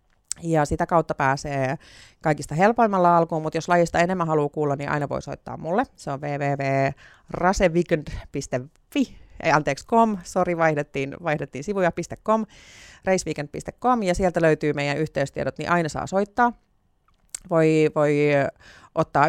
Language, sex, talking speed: Finnish, female, 115 wpm